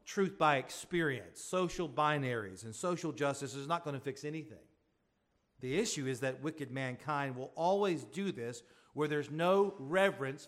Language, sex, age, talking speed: English, male, 40-59, 160 wpm